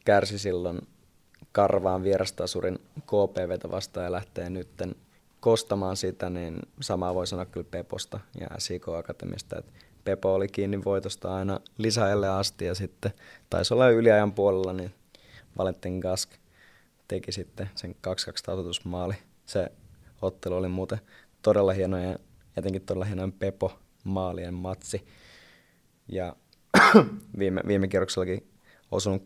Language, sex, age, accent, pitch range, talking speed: Finnish, male, 20-39, native, 90-100 Hz, 120 wpm